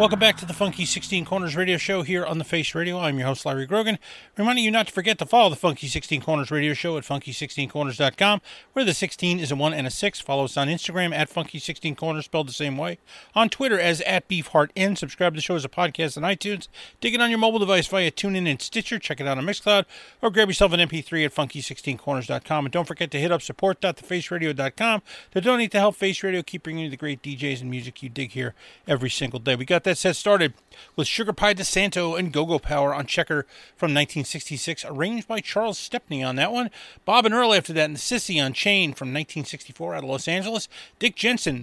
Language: English